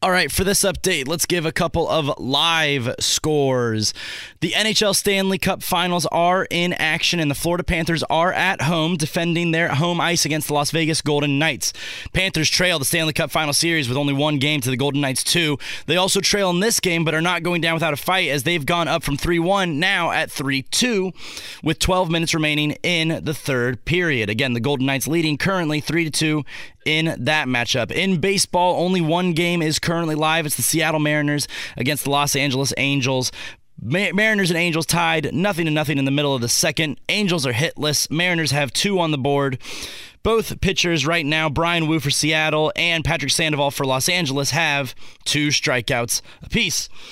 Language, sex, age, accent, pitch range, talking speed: English, male, 20-39, American, 140-175 Hz, 190 wpm